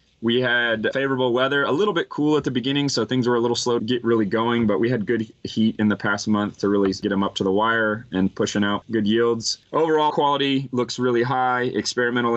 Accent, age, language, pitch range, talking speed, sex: American, 20-39, English, 100-120 Hz, 240 wpm, male